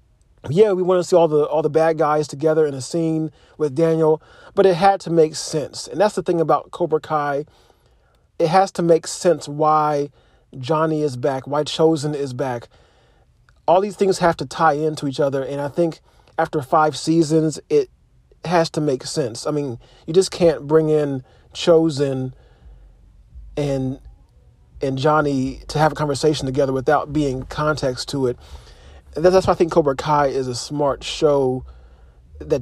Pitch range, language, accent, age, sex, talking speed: 130-160 Hz, English, American, 40-59, male, 175 wpm